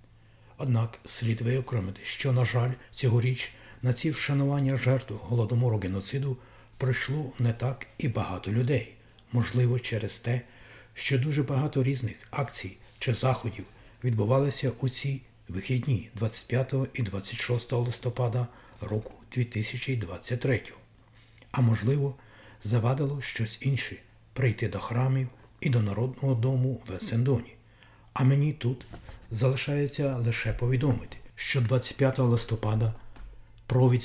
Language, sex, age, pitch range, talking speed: Ukrainian, male, 60-79, 110-130 Hz, 115 wpm